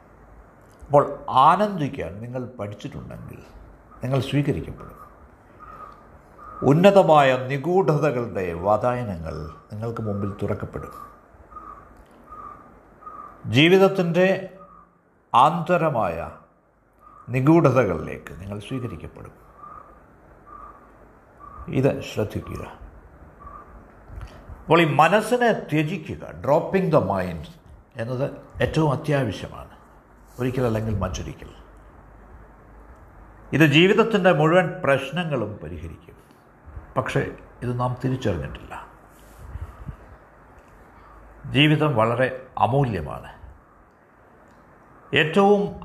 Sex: male